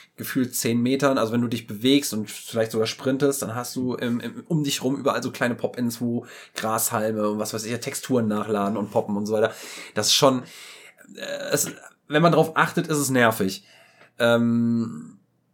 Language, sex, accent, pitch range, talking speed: German, male, German, 120-165 Hz, 180 wpm